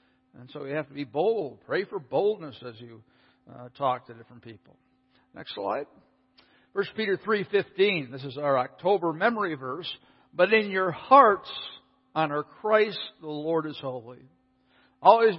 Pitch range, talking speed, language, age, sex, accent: 130-170 Hz, 150 wpm, English, 60-79, male, American